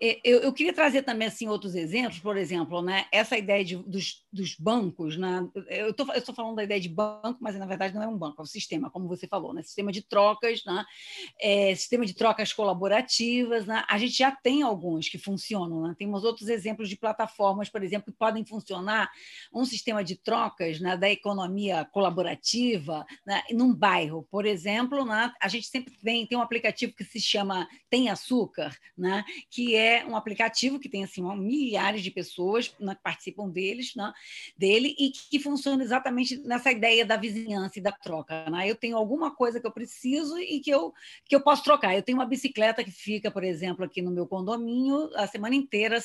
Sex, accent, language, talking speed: female, Brazilian, Portuguese, 200 wpm